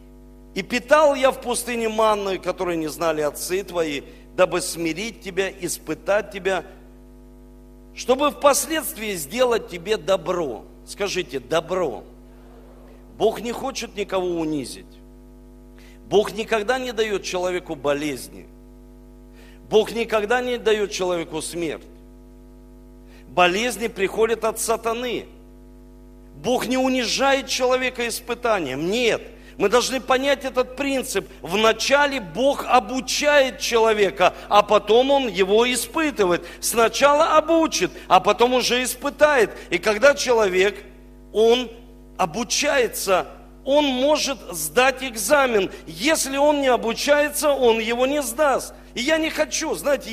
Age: 50-69